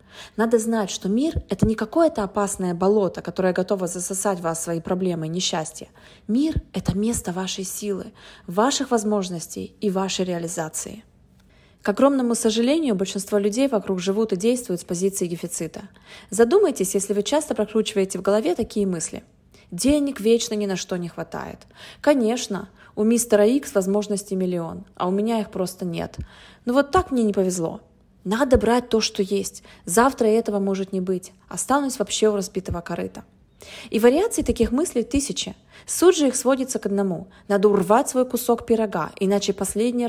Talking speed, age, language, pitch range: 165 wpm, 20-39, Russian, 190-240 Hz